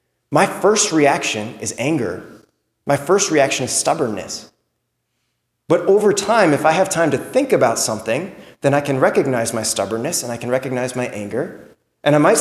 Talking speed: 175 wpm